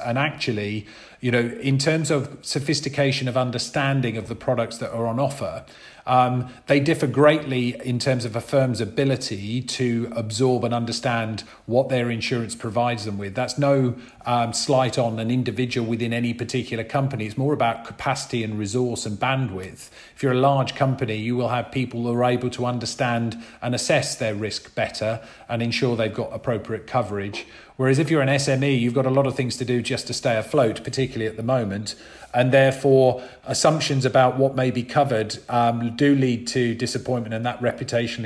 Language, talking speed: English, 185 wpm